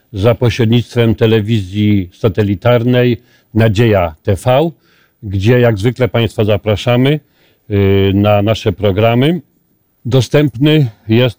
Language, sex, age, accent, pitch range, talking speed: Polish, male, 40-59, native, 105-125 Hz, 85 wpm